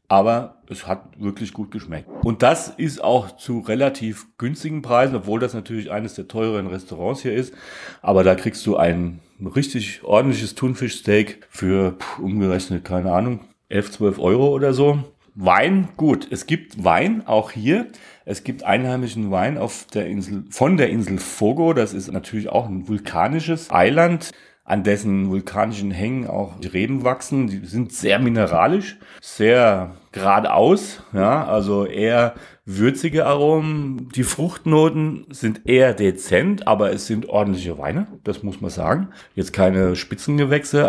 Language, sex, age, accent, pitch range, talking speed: German, male, 40-59, German, 95-130 Hz, 150 wpm